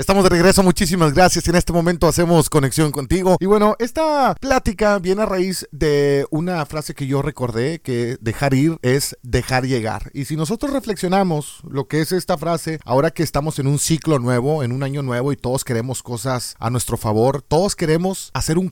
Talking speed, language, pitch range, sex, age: 195 wpm, Spanish, 135-180 Hz, male, 40-59